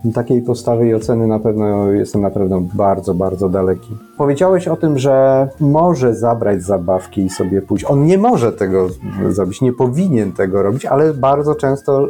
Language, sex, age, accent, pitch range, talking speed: Polish, male, 30-49, native, 100-135 Hz, 170 wpm